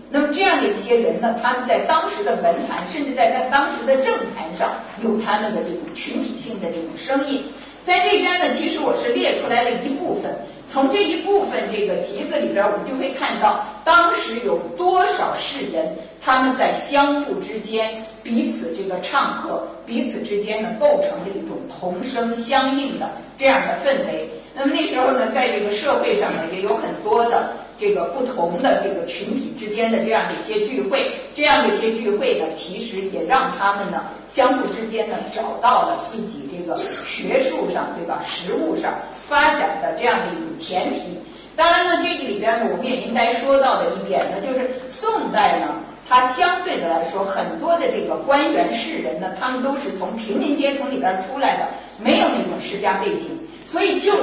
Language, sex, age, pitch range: Chinese, female, 50-69, 225-295 Hz